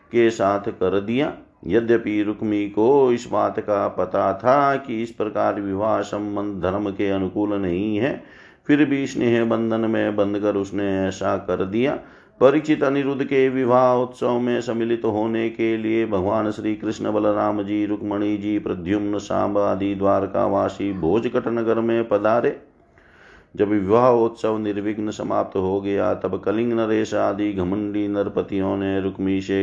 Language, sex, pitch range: Hindi, male, 100-115 Hz